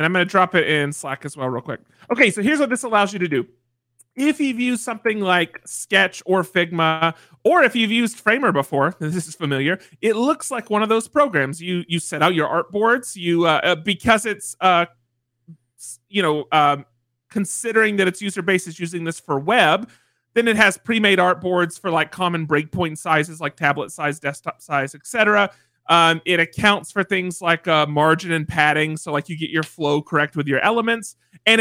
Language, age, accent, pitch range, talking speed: English, 30-49, American, 150-210 Hz, 200 wpm